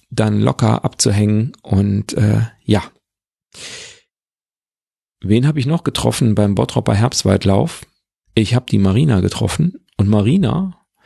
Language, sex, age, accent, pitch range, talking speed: German, male, 40-59, German, 105-125 Hz, 115 wpm